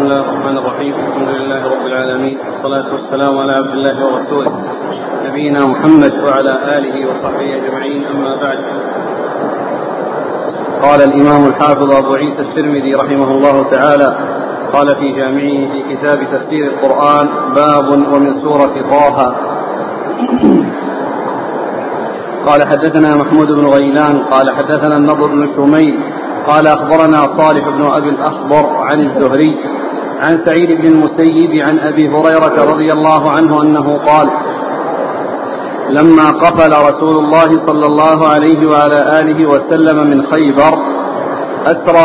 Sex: male